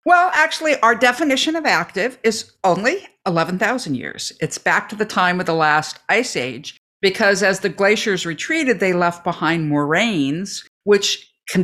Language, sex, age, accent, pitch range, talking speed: English, female, 50-69, American, 160-230 Hz, 160 wpm